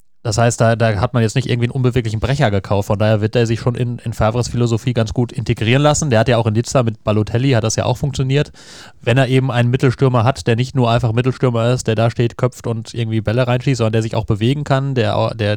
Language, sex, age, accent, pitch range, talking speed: German, male, 30-49, German, 110-125 Hz, 260 wpm